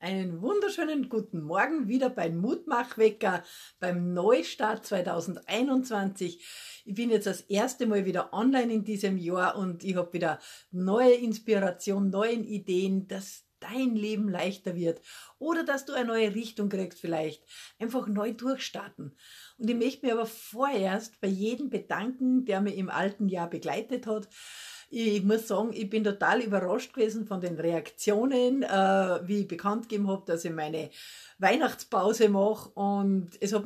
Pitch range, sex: 190-250 Hz, female